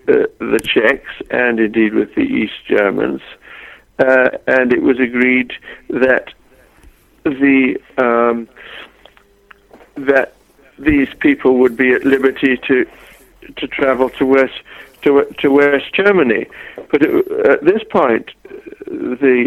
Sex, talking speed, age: male, 120 wpm, 60-79